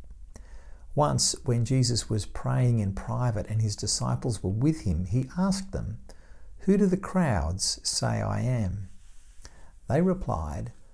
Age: 60-79